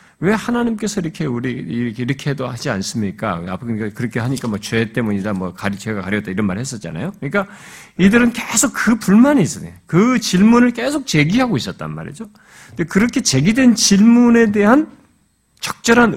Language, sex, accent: Korean, male, native